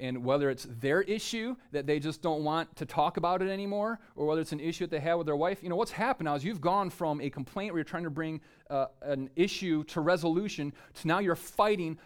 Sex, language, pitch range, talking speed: male, English, 140-175 Hz, 255 wpm